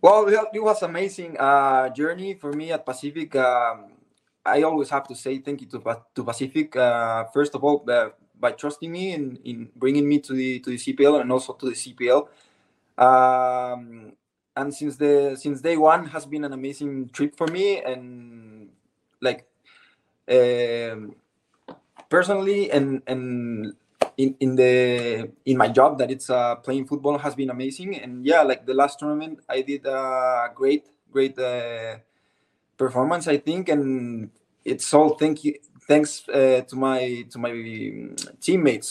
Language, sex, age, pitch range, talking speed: English, male, 20-39, 125-150 Hz, 160 wpm